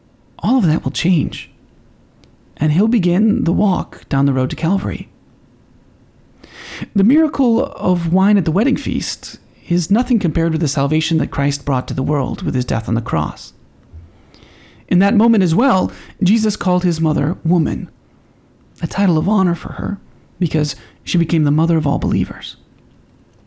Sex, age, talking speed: male, 30-49, 165 wpm